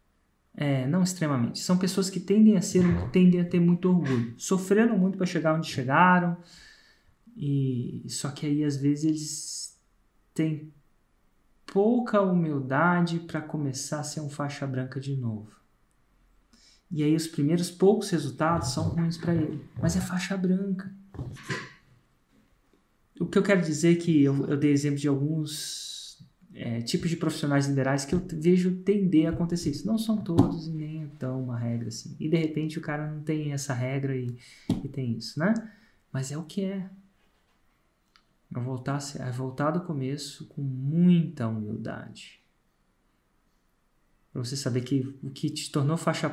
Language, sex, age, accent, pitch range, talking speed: Portuguese, male, 20-39, Brazilian, 140-180 Hz, 165 wpm